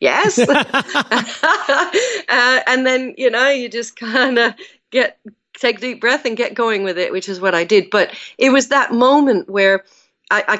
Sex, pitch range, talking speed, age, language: female, 180-245 Hz, 180 wpm, 40-59, English